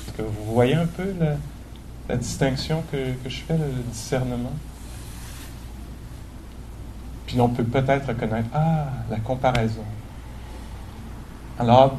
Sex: male